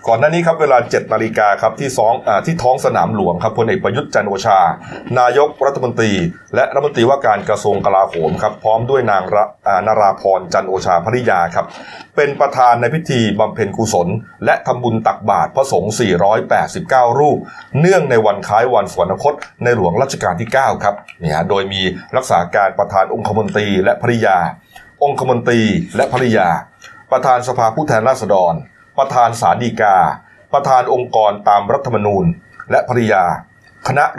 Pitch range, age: 105-145 Hz, 30-49